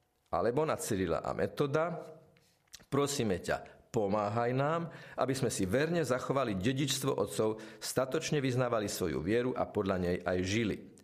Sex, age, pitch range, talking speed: male, 50-69, 100-135 Hz, 135 wpm